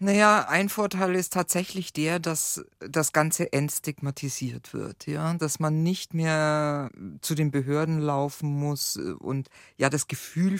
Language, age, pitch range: German, 50-69, 130-160 Hz